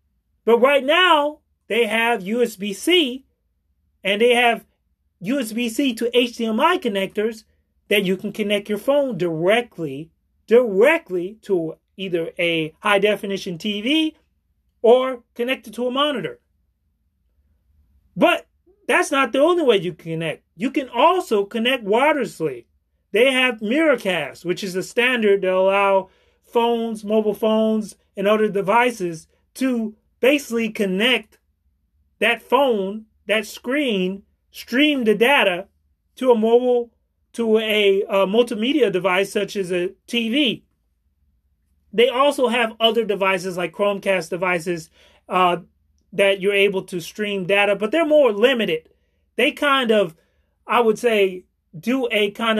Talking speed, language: 130 wpm, English